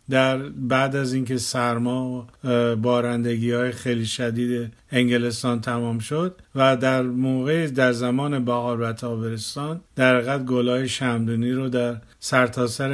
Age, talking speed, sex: 50-69, 125 wpm, male